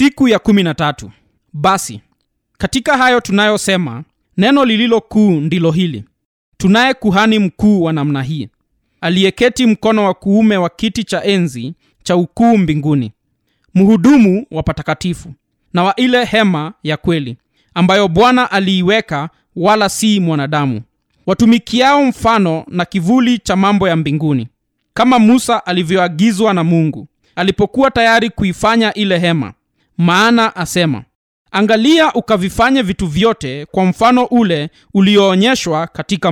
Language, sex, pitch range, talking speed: Swahili, male, 160-225 Hz, 120 wpm